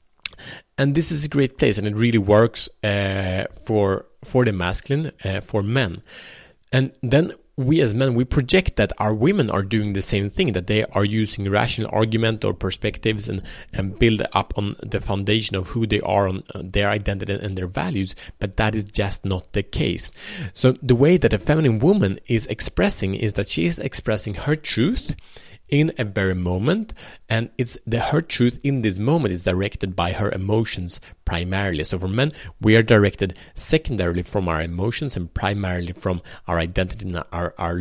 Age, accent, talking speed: 30-49, Norwegian, 185 wpm